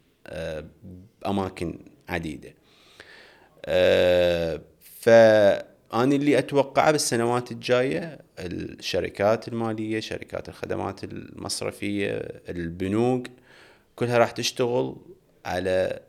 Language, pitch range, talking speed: Arabic, 90-115 Hz, 65 wpm